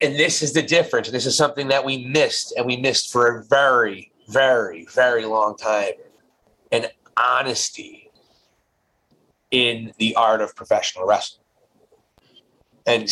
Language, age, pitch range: English, 30-49, 120-150 Hz